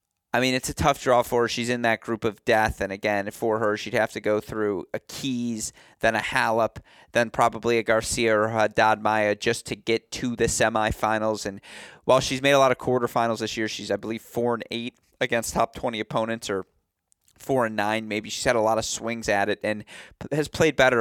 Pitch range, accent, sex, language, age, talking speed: 110-130 Hz, American, male, English, 30-49, 225 wpm